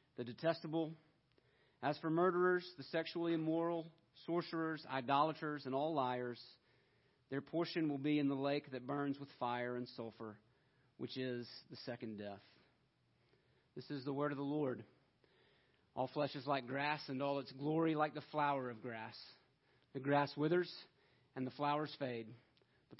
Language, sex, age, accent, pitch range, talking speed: English, male, 40-59, American, 130-160 Hz, 155 wpm